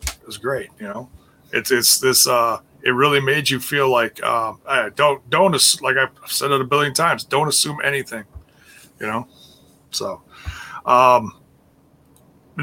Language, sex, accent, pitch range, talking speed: English, male, American, 135-180 Hz, 155 wpm